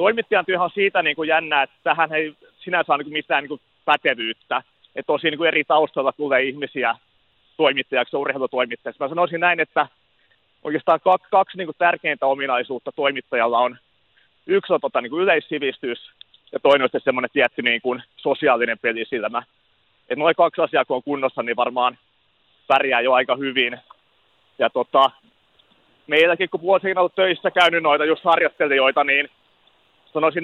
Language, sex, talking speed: Finnish, male, 155 wpm